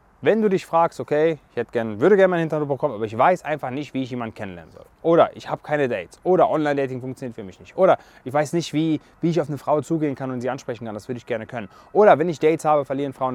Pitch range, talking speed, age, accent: 125-160 Hz, 270 wpm, 30-49, German